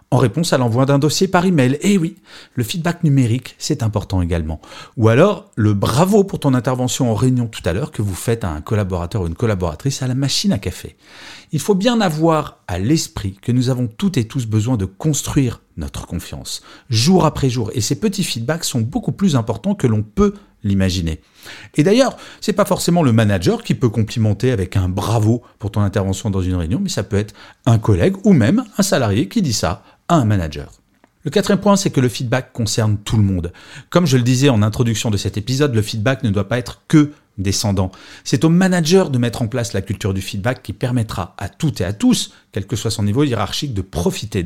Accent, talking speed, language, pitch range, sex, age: French, 225 wpm, French, 105-155 Hz, male, 40-59